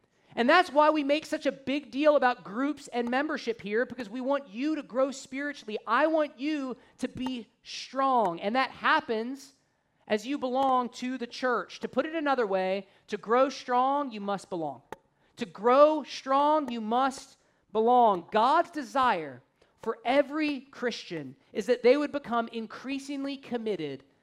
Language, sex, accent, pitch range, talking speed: English, male, American, 215-270 Hz, 160 wpm